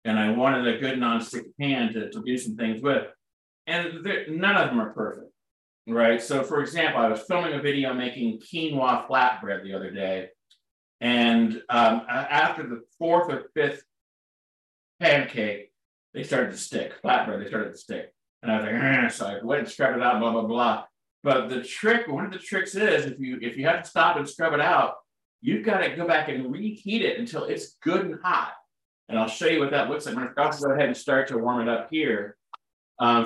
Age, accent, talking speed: 40-59, American, 215 wpm